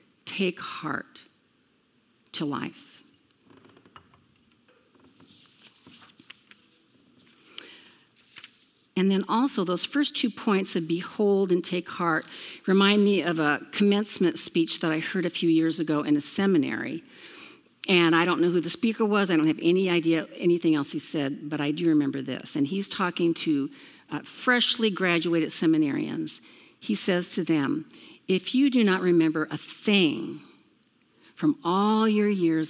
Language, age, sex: English, 50-69, female